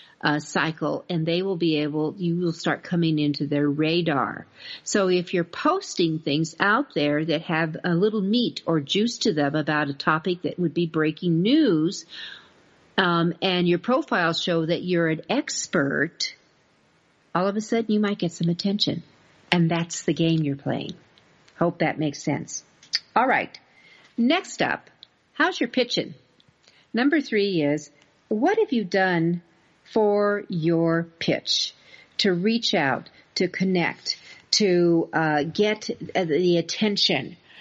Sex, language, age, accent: female, English, 50-69, American